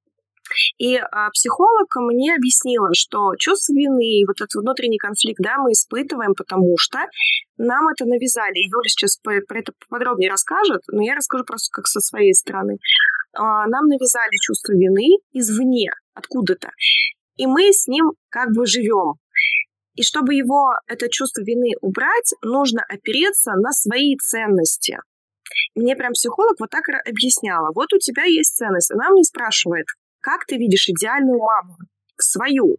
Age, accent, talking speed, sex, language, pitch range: 20-39, native, 145 wpm, female, Russian, 210-305 Hz